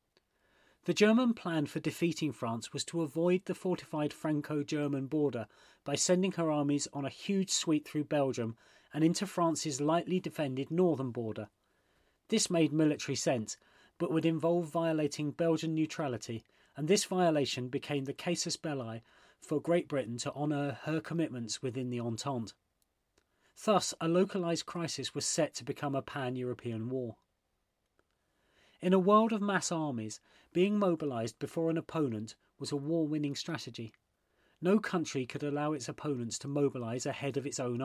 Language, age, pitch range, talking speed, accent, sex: English, 40-59, 130-170 Hz, 150 wpm, British, male